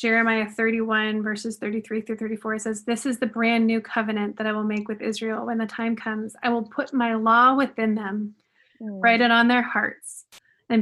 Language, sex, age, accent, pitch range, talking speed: English, female, 20-39, American, 215-245 Hz, 200 wpm